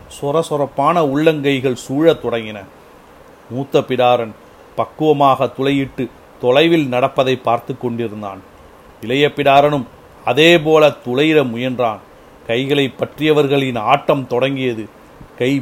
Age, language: 40-59, Tamil